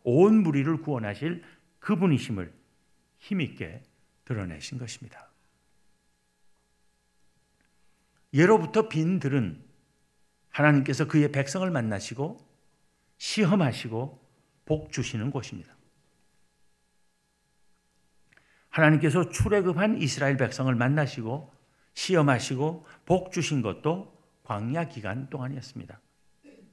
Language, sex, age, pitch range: Korean, male, 50-69, 105-165 Hz